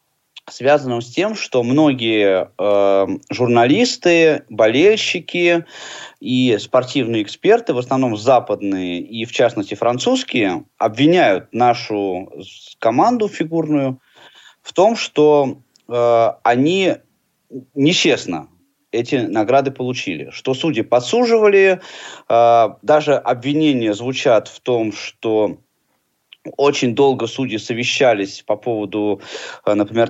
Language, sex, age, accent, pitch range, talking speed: Russian, male, 20-39, native, 110-145 Hz, 95 wpm